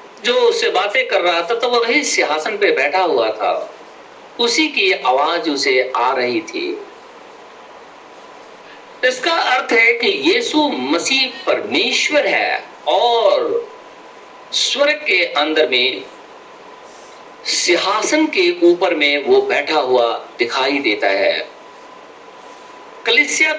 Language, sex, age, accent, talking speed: Hindi, male, 50-69, native, 115 wpm